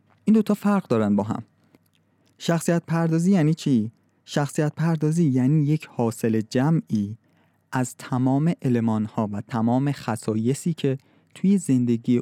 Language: Persian